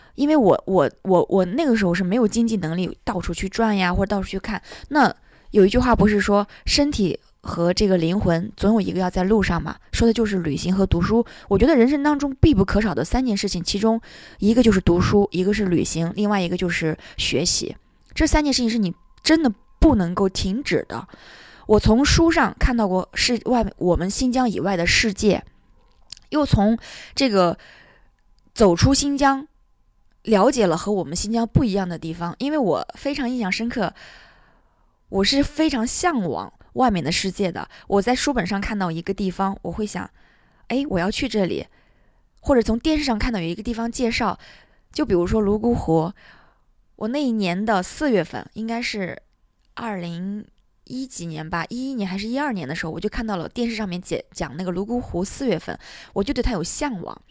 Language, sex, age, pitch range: English, female, 20-39, 185-240 Hz